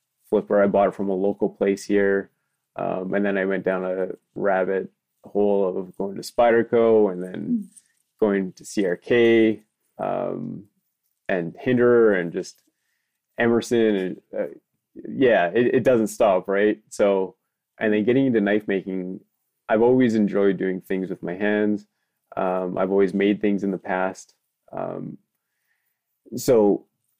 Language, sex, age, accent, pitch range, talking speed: German, male, 20-39, American, 95-110 Hz, 145 wpm